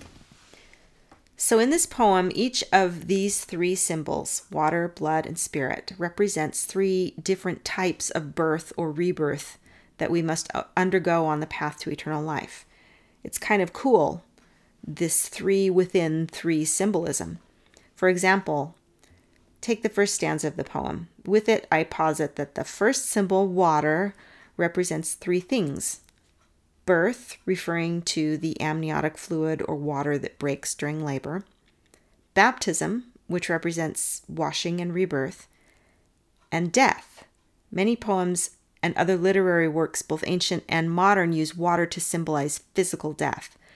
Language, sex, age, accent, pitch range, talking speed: English, female, 40-59, American, 155-190 Hz, 135 wpm